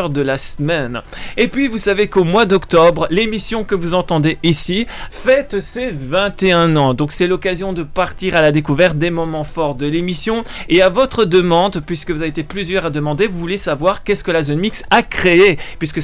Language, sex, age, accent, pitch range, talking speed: French, male, 20-39, French, 150-190 Hz, 200 wpm